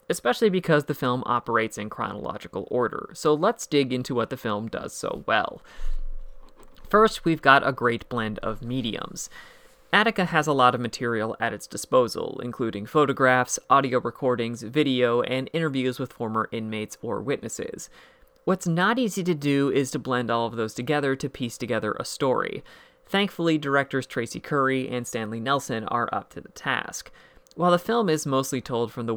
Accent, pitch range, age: American, 120-155 Hz, 30-49